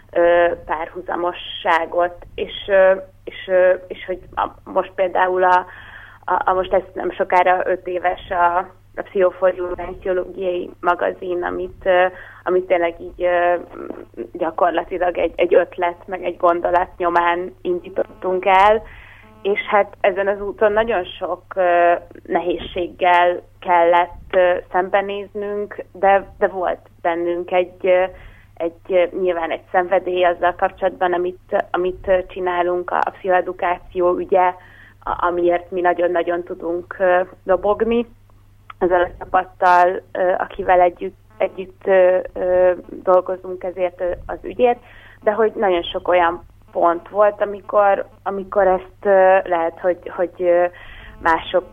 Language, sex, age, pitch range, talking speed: Hungarian, female, 30-49, 175-190 Hz, 115 wpm